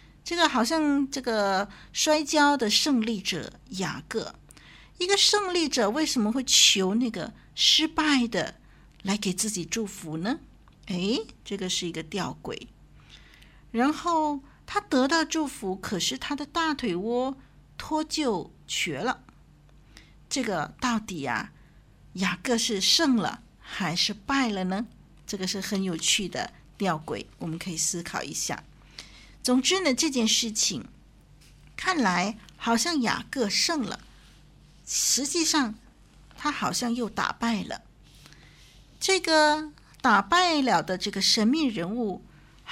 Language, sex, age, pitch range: Chinese, female, 50-69, 190-280 Hz